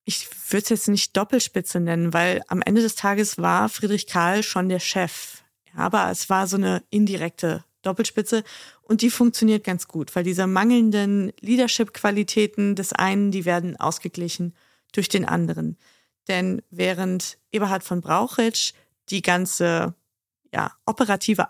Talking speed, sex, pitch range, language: 140 wpm, female, 180-220 Hz, German